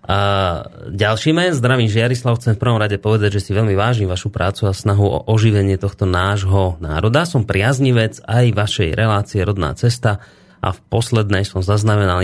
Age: 30-49